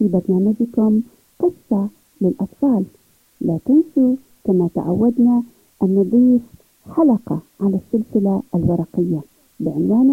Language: Arabic